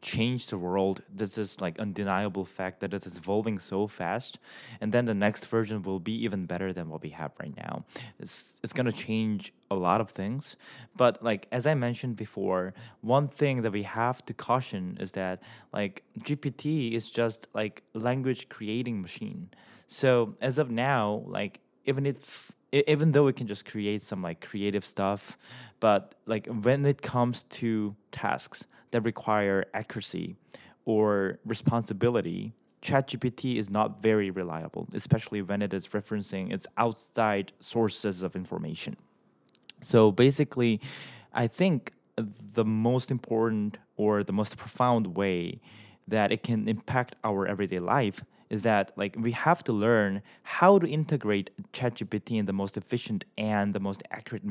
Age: 20-39